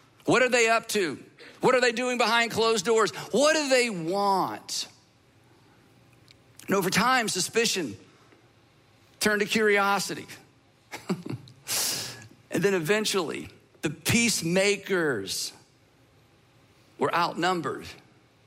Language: English